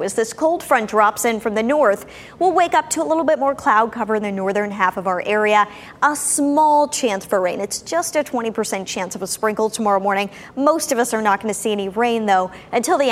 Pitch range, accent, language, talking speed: 200-275 Hz, American, English, 245 wpm